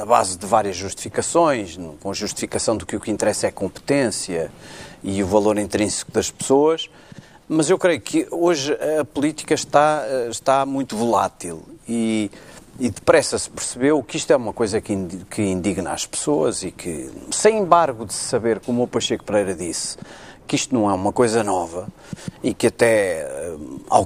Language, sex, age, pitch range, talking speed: Portuguese, male, 40-59, 100-135 Hz, 170 wpm